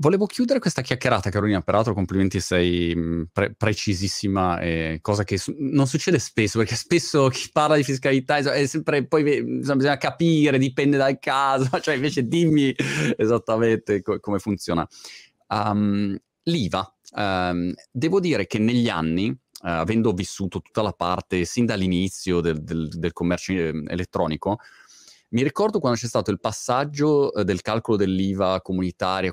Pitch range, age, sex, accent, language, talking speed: 90-120 Hz, 30-49, male, native, Italian, 125 wpm